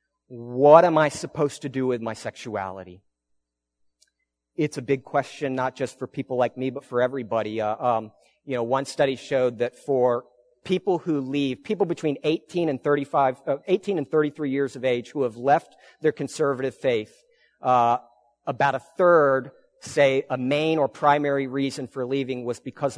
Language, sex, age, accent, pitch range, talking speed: English, male, 40-59, American, 125-155 Hz, 170 wpm